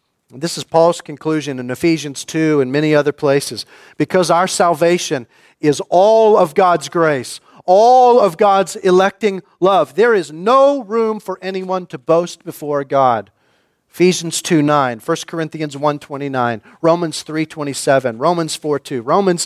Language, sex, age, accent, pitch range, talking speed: English, male, 40-59, American, 140-180 Hz, 135 wpm